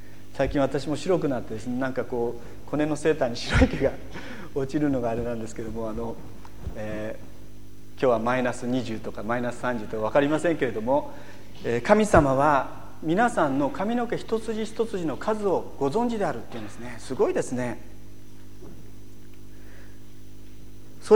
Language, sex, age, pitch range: Japanese, male, 40-59, 115-170 Hz